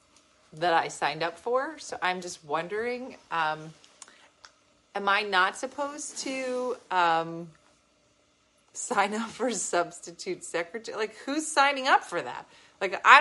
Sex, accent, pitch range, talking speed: female, American, 180-285 Hz, 130 wpm